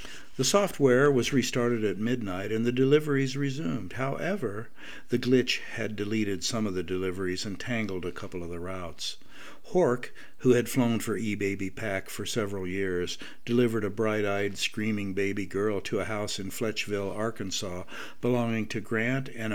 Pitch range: 105-130 Hz